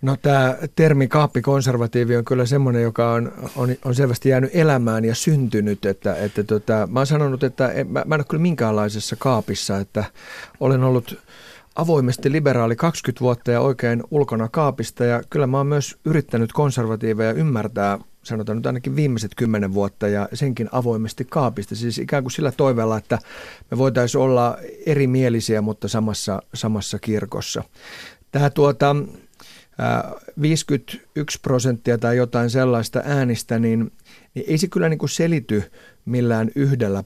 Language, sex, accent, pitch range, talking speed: Finnish, male, native, 110-135 Hz, 150 wpm